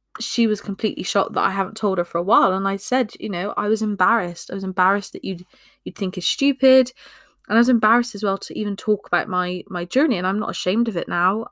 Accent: British